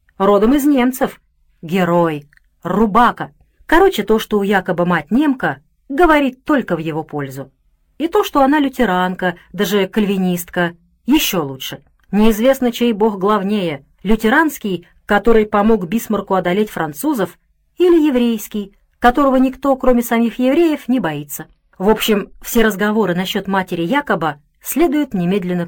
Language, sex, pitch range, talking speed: Russian, female, 170-245 Hz, 125 wpm